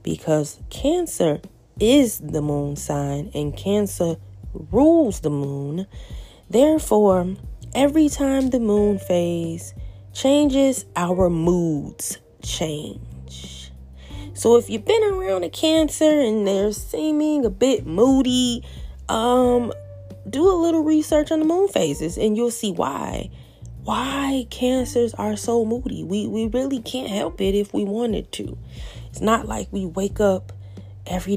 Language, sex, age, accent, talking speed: English, female, 20-39, American, 130 wpm